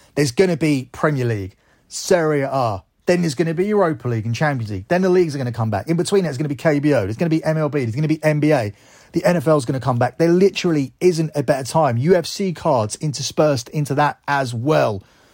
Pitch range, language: 115-155 Hz, English